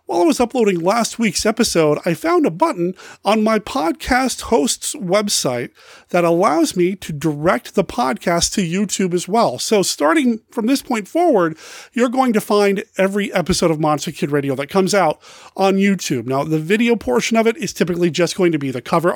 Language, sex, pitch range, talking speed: English, male, 155-215 Hz, 195 wpm